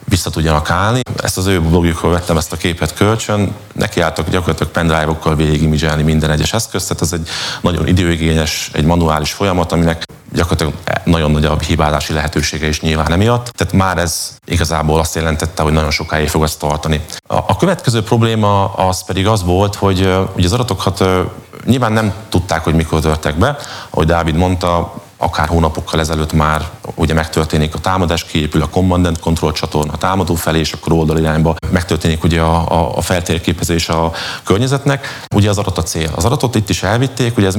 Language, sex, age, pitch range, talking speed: Hungarian, male, 30-49, 80-95 Hz, 170 wpm